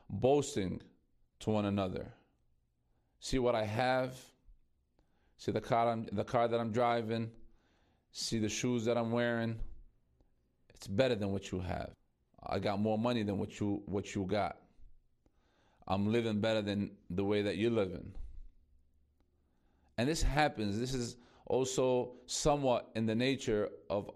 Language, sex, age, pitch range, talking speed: English, male, 40-59, 100-120 Hz, 145 wpm